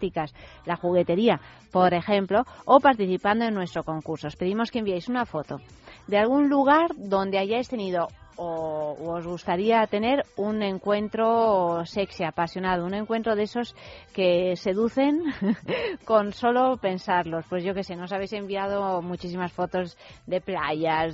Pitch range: 175-230 Hz